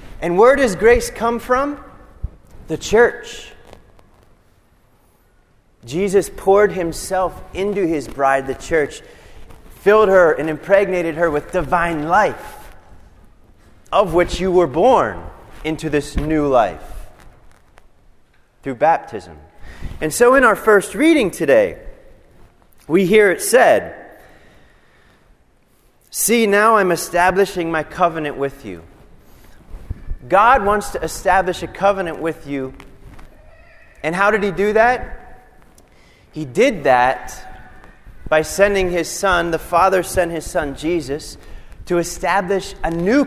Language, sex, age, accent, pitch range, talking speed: English, male, 30-49, American, 140-200 Hz, 120 wpm